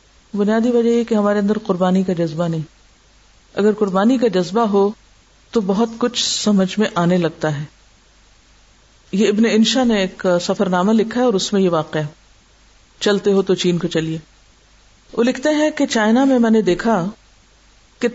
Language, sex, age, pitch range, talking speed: Urdu, female, 50-69, 185-240 Hz, 180 wpm